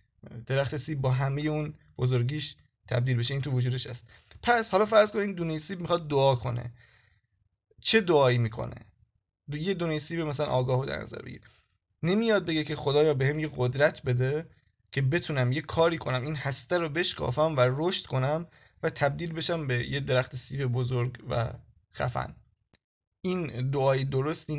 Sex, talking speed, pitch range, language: male, 160 wpm, 120-155 Hz, Persian